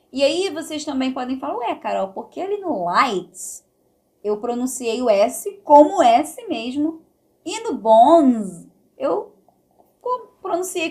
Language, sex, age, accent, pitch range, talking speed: Portuguese, female, 20-39, Brazilian, 195-265 Hz, 140 wpm